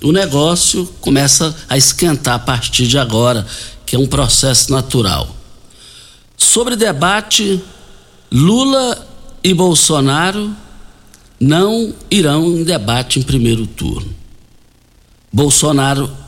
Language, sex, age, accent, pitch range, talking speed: Portuguese, male, 60-79, Brazilian, 110-160 Hz, 100 wpm